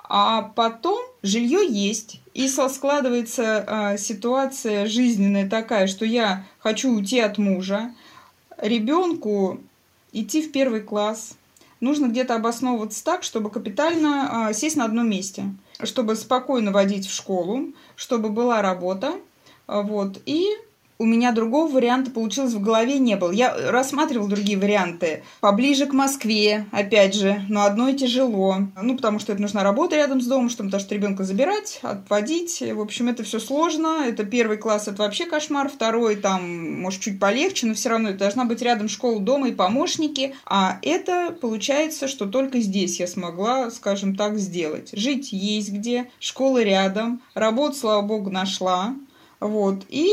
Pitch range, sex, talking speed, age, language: 205-270 Hz, female, 150 wpm, 20-39, Russian